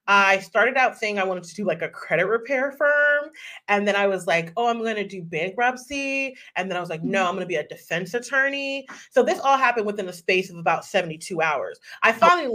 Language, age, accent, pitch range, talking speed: English, 30-49, American, 180-250 Hz, 240 wpm